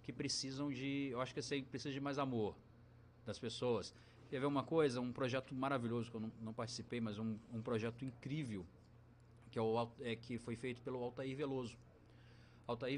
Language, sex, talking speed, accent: Portuguese, male, 195 wpm, Brazilian